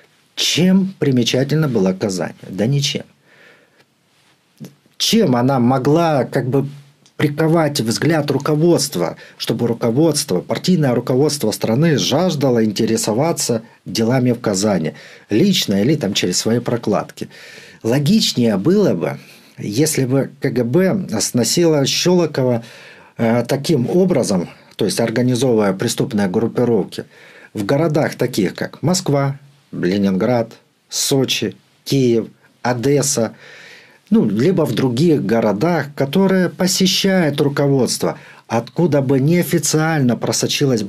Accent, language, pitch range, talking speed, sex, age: native, Russian, 120-160 Hz, 100 wpm, male, 50-69